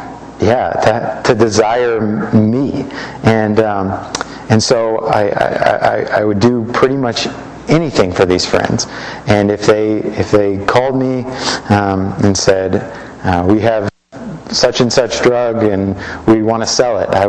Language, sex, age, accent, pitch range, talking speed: English, male, 30-49, American, 100-115 Hz, 155 wpm